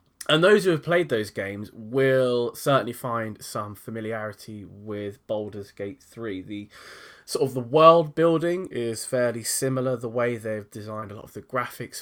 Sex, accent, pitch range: male, British, 105-135 Hz